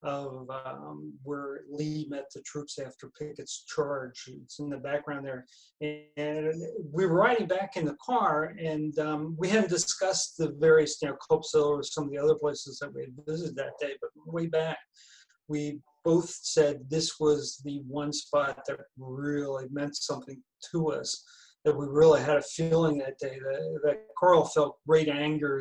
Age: 40-59